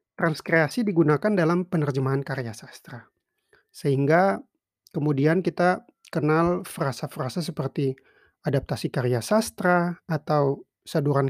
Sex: male